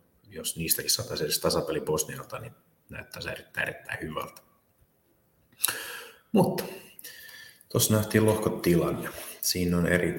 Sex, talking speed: male, 105 wpm